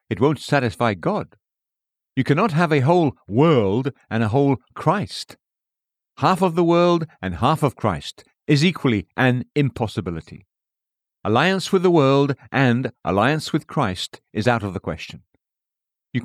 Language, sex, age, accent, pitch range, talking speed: English, male, 50-69, British, 110-150 Hz, 150 wpm